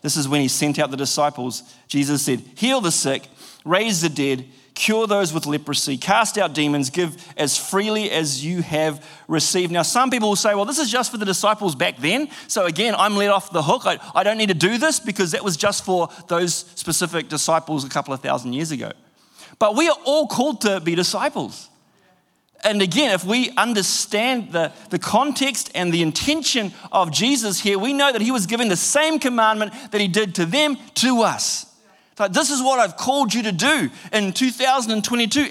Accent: Australian